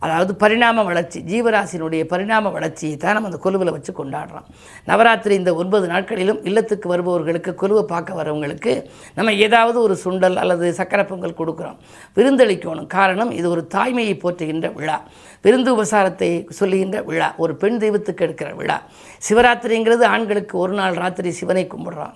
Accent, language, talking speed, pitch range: native, Tamil, 135 wpm, 170-210 Hz